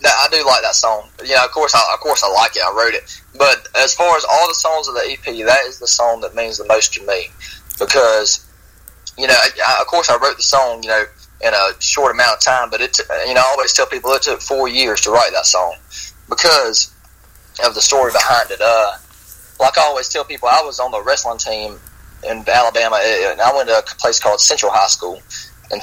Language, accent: English, American